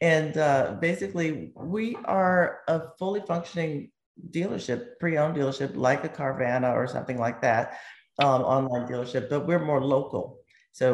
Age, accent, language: 40-59, American, English